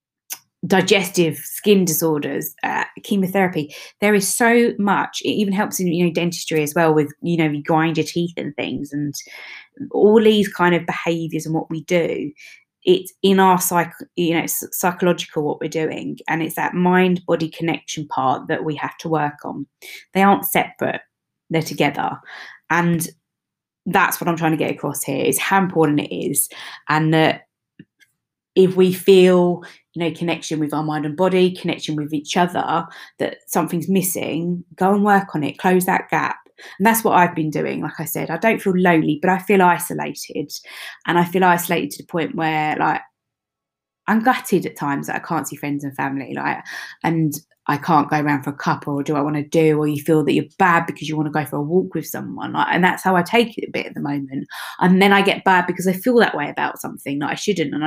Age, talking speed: 20-39, 210 wpm